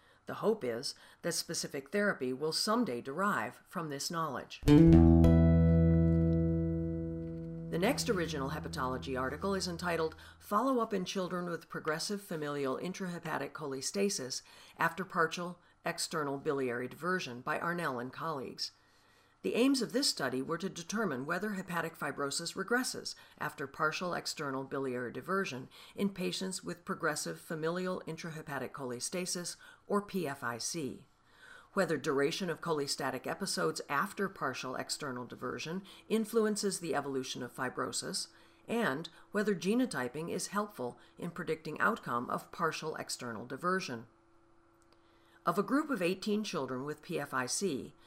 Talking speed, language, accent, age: 120 wpm, English, American, 50-69